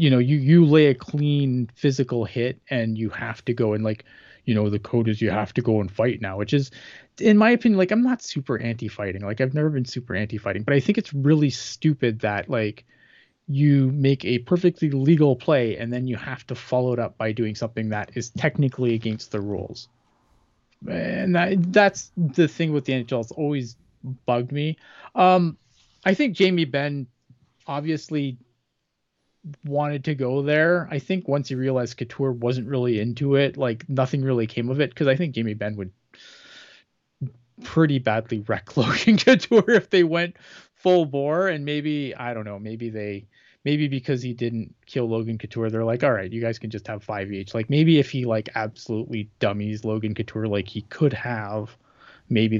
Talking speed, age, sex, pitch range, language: 190 wpm, 20-39, male, 110-145 Hz, English